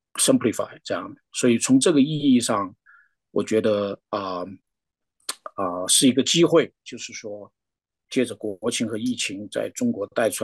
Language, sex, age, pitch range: Chinese, male, 50-69, 110-155 Hz